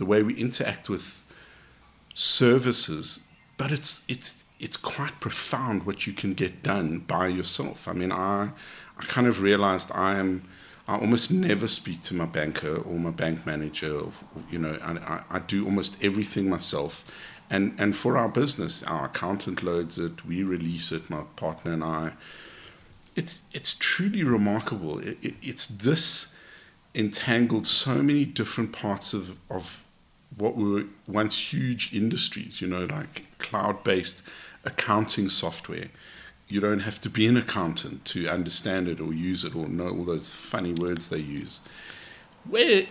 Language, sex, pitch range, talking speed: English, male, 85-110 Hz, 160 wpm